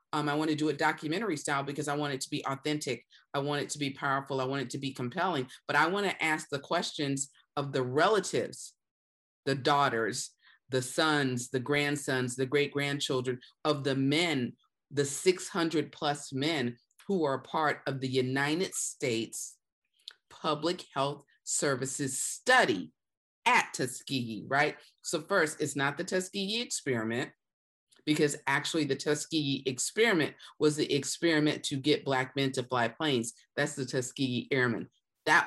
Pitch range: 135-160 Hz